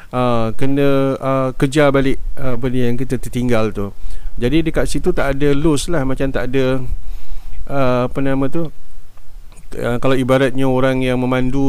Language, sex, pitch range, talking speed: Malay, male, 125-140 Hz, 130 wpm